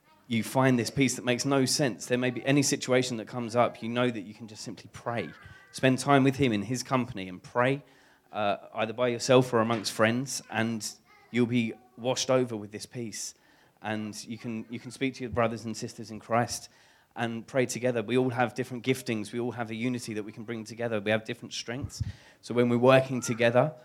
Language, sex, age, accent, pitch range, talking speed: English, male, 20-39, British, 110-125 Hz, 220 wpm